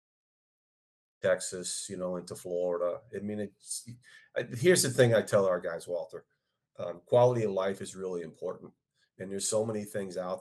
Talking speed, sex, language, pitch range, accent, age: 165 wpm, male, English, 90-110 Hz, American, 40-59